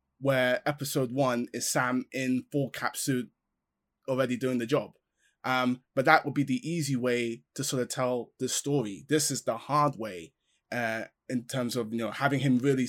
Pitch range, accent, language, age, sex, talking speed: 115-140 Hz, British, English, 20-39, male, 190 wpm